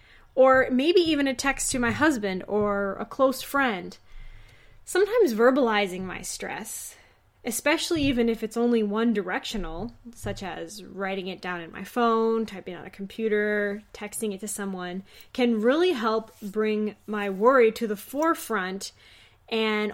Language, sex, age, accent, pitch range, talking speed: English, female, 10-29, American, 205-255 Hz, 150 wpm